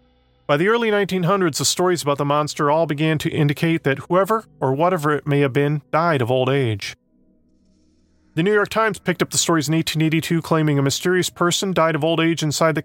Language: English